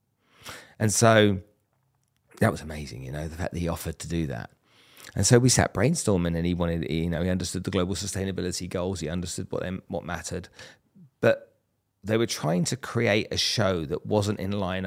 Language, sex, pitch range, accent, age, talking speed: English, male, 85-105 Hz, British, 40-59, 200 wpm